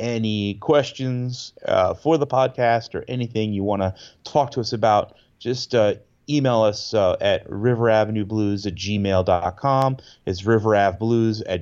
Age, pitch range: 30-49, 105-125 Hz